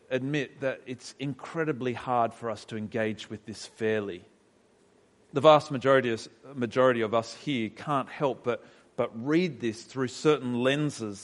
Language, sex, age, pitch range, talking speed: English, male, 40-59, 120-155 Hz, 150 wpm